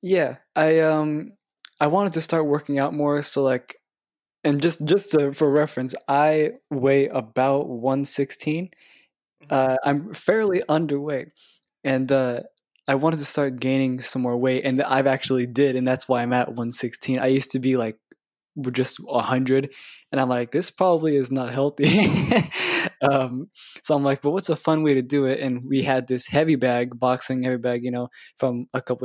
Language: English